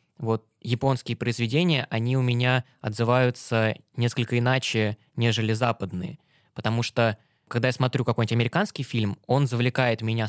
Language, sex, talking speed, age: Russian, male, 130 wpm, 20-39